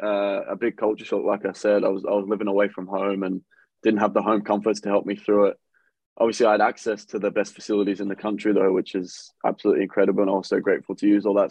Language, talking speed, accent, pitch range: English, 260 wpm, British, 100-120 Hz